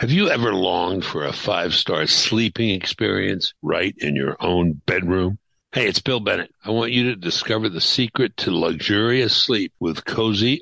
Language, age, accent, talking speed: English, 60-79, American, 170 wpm